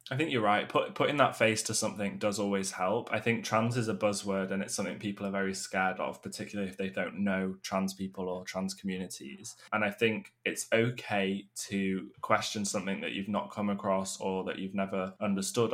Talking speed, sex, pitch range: 210 wpm, male, 95-115 Hz